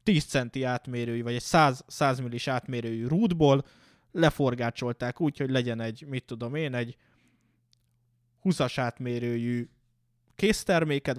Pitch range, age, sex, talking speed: 120-160 Hz, 20-39, male, 115 wpm